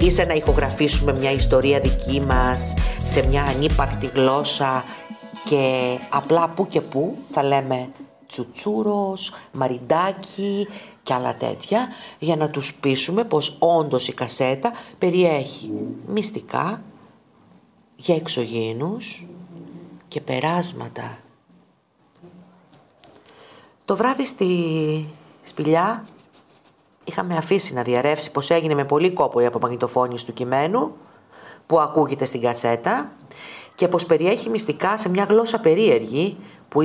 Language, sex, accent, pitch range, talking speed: Greek, female, native, 135-200 Hz, 110 wpm